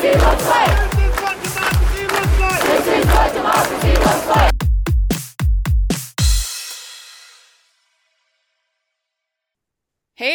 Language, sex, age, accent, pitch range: English, female, 20-39, American, 190-260 Hz